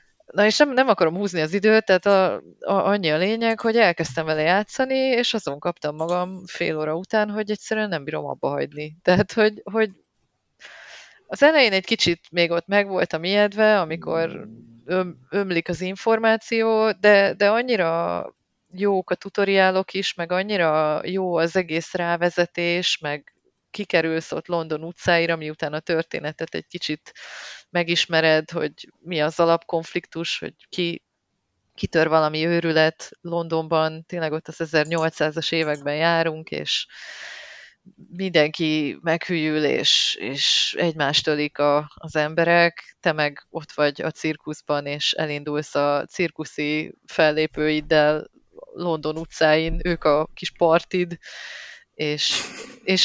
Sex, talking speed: female, 135 wpm